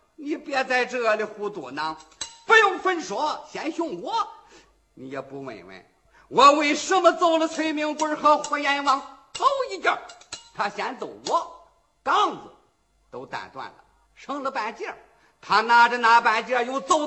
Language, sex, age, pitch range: Chinese, male, 50-69, 240-335 Hz